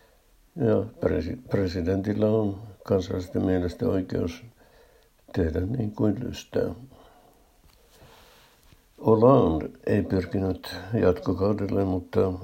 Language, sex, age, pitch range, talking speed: Finnish, male, 60-79, 90-100 Hz, 70 wpm